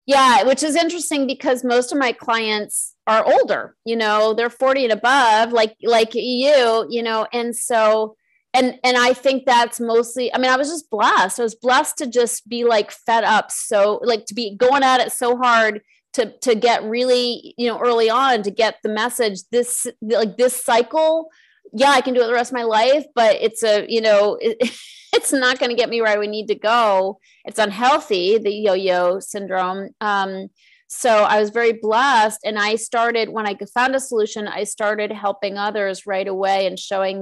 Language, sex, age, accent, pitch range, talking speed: English, female, 30-49, American, 195-245 Hz, 200 wpm